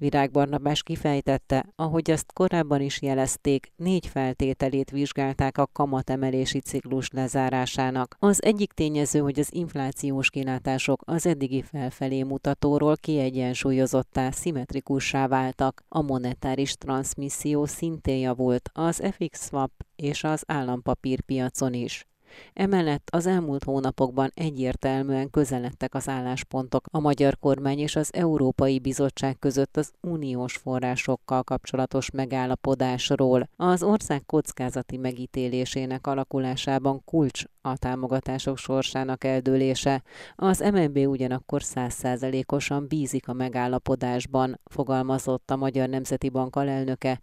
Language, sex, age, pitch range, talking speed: Hungarian, female, 30-49, 130-145 Hz, 105 wpm